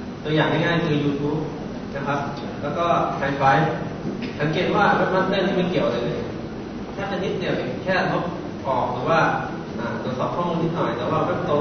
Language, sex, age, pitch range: Thai, male, 20-39, 145-175 Hz